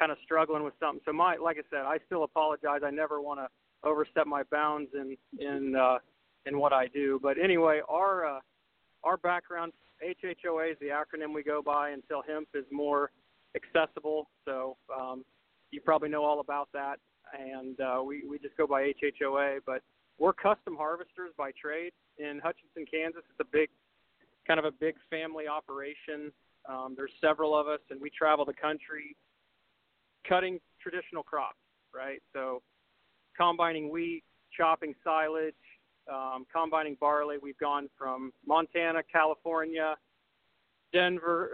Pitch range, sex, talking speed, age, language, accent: 140-165 Hz, male, 155 wpm, 40-59, English, American